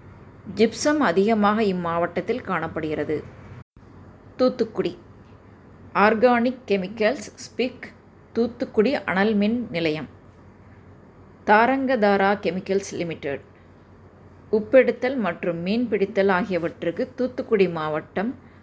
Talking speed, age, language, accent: 70 wpm, 20-39, Tamil, native